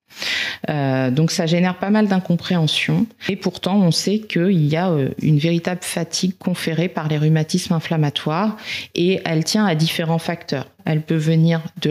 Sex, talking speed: female, 160 wpm